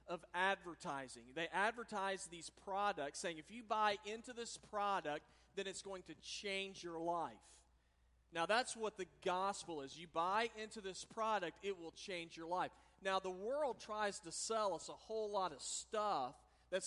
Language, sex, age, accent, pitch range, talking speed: English, male, 40-59, American, 165-205 Hz, 175 wpm